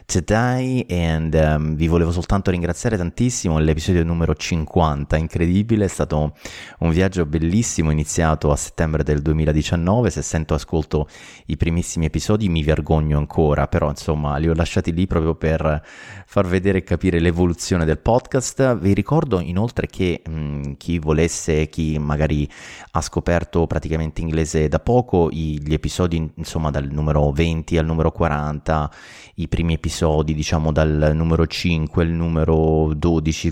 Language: Italian